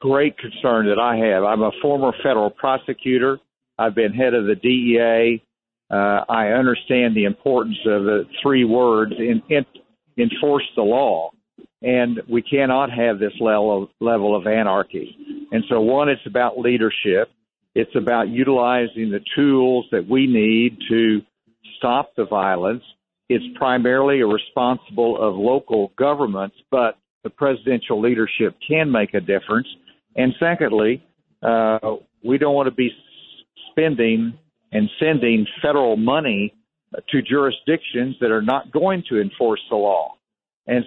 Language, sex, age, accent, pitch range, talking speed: English, male, 50-69, American, 115-140 Hz, 140 wpm